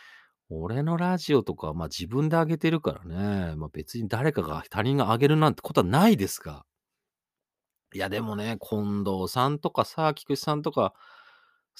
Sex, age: male, 40-59